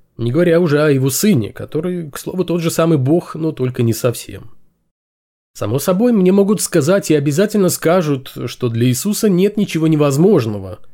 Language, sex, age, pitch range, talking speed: Russian, male, 20-39, 125-180 Hz, 170 wpm